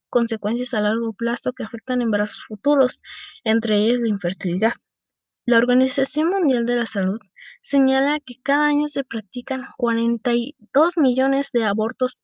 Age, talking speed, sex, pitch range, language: 20-39, 135 wpm, female, 220-270 Hz, English